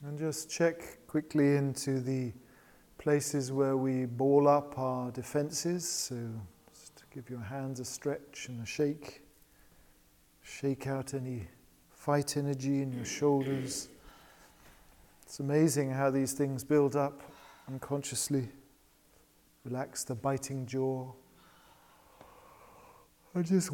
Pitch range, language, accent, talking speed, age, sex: 130-150 Hz, English, British, 115 wpm, 40-59, male